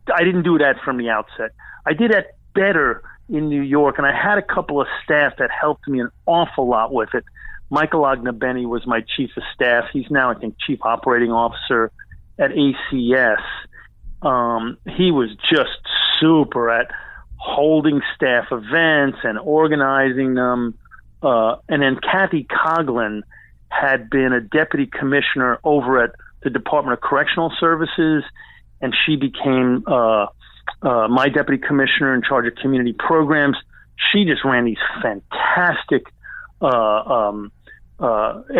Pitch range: 125-155 Hz